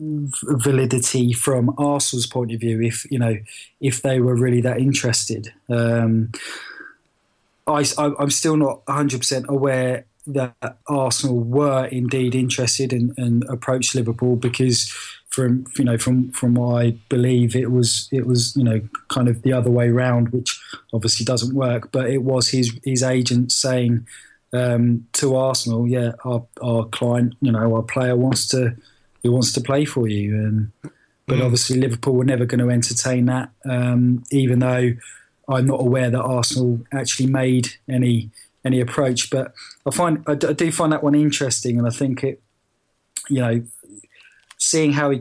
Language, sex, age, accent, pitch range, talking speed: English, male, 20-39, British, 120-135 Hz, 165 wpm